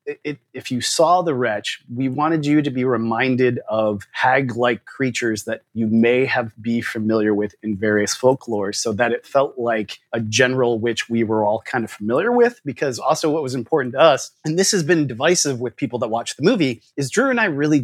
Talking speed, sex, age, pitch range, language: 215 wpm, male, 30-49, 110-140 Hz, English